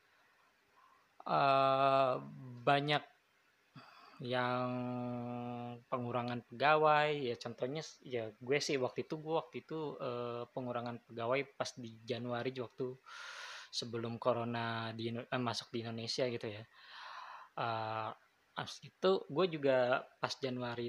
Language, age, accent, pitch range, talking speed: Indonesian, 20-39, native, 115-135 Hz, 105 wpm